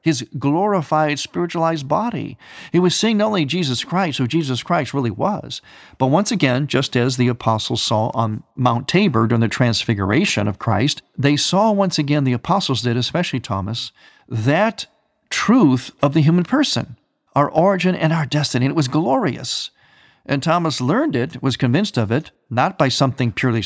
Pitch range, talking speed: 120-160 Hz, 170 wpm